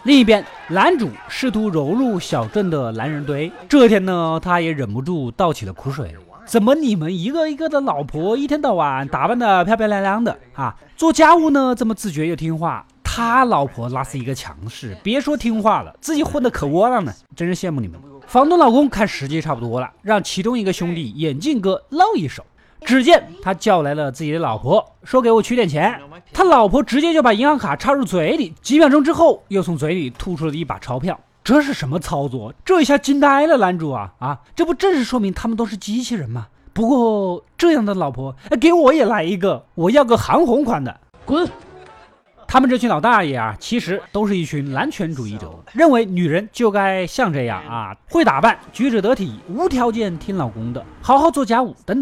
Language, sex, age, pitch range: Chinese, male, 20-39, 155-260 Hz